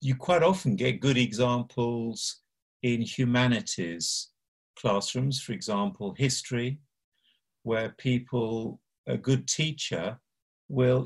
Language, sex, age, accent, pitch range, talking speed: English, male, 50-69, British, 120-145 Hz, 100 wpm